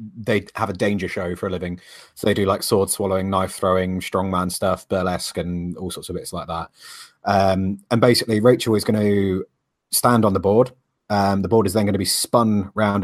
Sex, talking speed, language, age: male, 215 wpm, English, 30-49